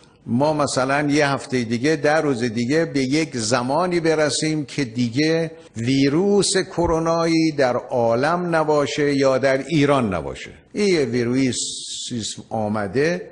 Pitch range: 120-160 Hz